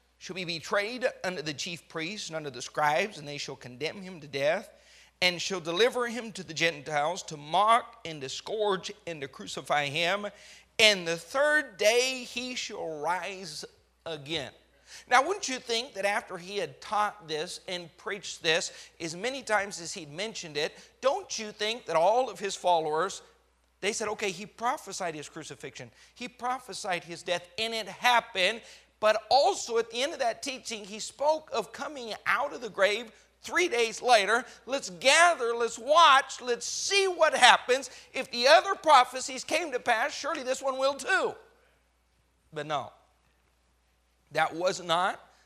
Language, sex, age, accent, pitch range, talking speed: English, male, 40-59, American, 170-255 Hz, 170 wpm